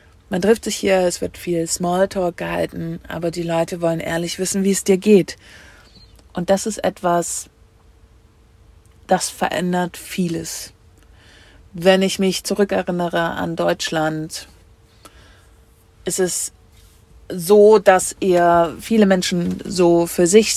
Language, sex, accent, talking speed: German, female, German, 120 wpm